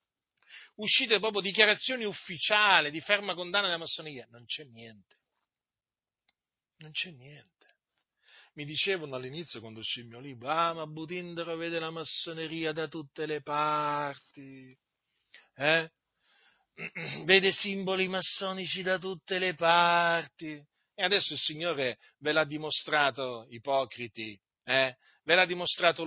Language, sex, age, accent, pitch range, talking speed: Italian, male, 40-59, native, 140-185 Hz, 120 wpm